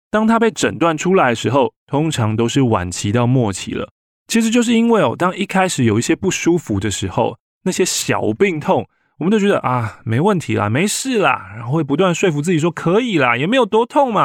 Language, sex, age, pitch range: Chinese, male, 20-39, 115-180 Hz